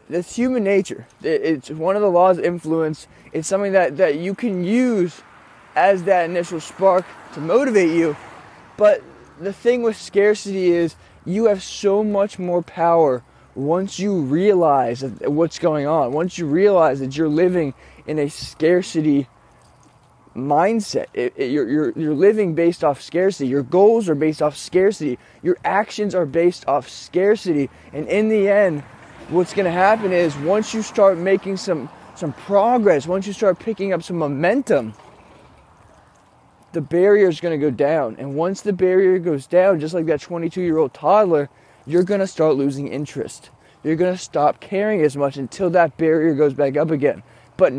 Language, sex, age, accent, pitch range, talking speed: English, male, 20-39, American, 155-195 Hz, 170 wpm